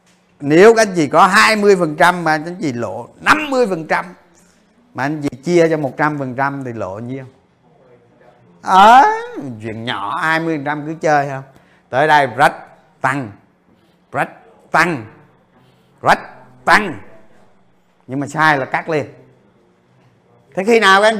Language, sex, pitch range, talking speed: Vietnamese, male, 140-190 Hz, 125 wpm